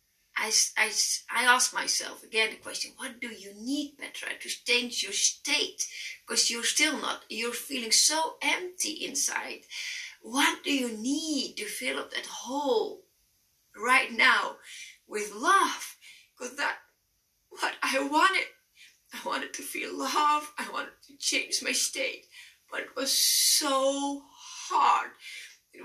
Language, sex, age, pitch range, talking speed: English, female, 30-49, 255-385 Hz, 140 wpm